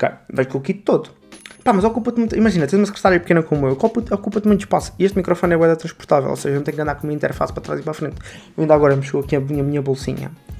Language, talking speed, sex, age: Portuguese, 285 wpm, male, 20-39